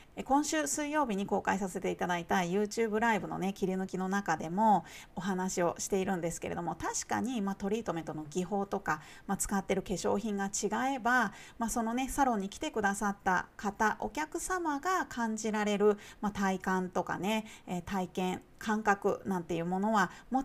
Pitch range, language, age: 190-270 Hz, Japanese, 40-59